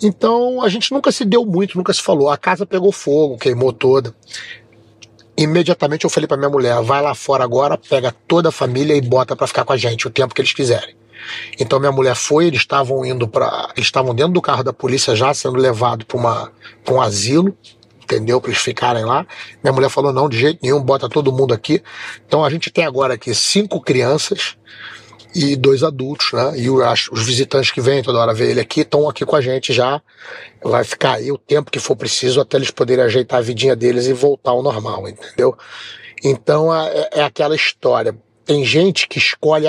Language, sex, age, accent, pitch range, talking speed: Portuguese, male, 40-59, Brazilian, 125-155 Hz, 205 wpm